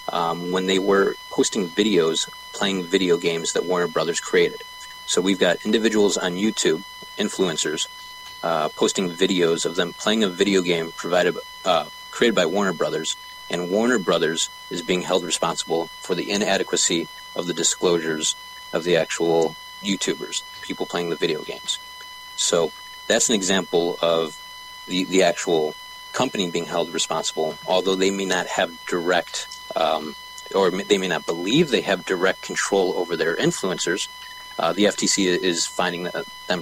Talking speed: 155 wpm